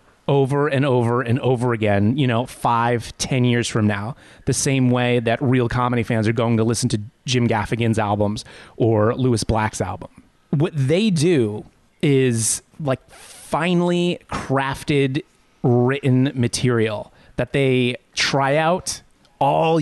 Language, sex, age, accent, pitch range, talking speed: English, male, 30-49, American, 115-145 Hz, 140 wpm